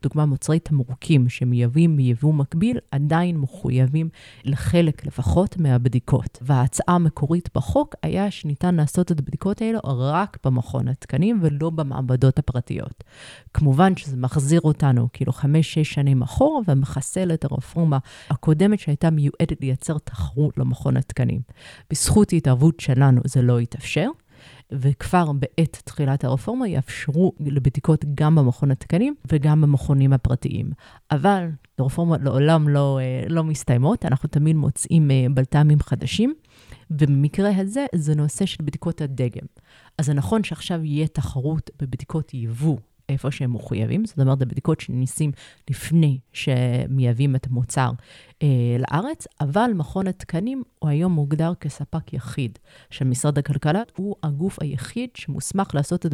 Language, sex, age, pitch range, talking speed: Hebrew, female, 30-49, 130-160 Hz, 125 wpm